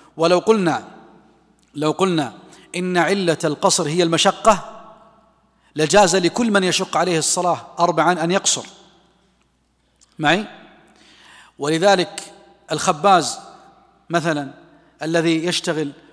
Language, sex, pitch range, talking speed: Arabic, male, 160-200 Hz, 90 wpm